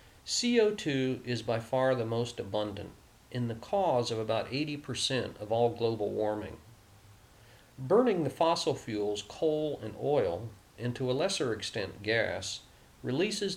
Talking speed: 135 wpm